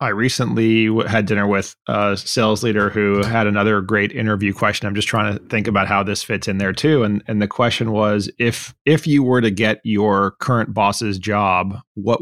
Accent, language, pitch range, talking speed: American, English, 100-115 Hz, 205 wpm